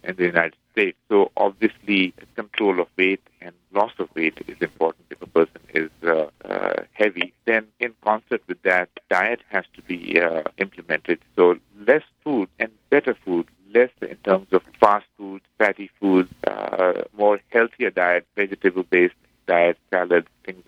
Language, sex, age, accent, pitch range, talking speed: English, male, 50-69, Indian, 90-105 Hz, 155 wpm